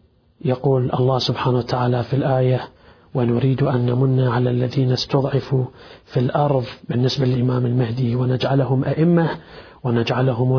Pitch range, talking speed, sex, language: 125-155 Hz, 115 wpm, male, Arabic